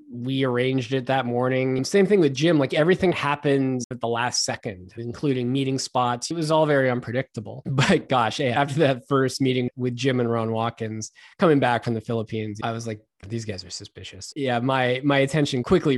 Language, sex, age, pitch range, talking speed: English, male, 20-39, 120-145 Hz, 195 wpm